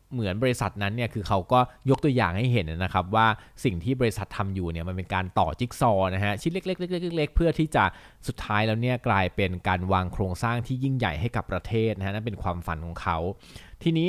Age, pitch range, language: 20-39, 95-125 Hz, Thai